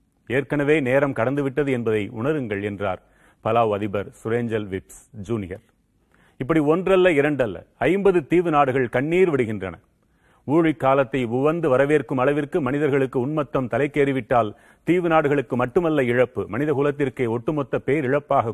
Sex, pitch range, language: male, 115-140 Hz, Tamil